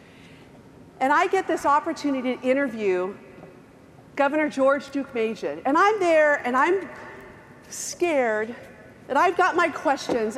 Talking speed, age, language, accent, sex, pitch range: 125 wpm, 40-59, English, American, female, 235-310 Hz